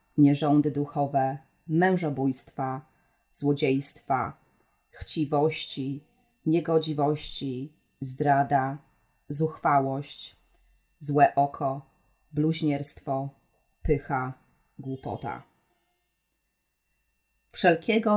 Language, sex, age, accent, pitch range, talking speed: Polish, female, 30-49, native, 140-165 Hz, 45 wpm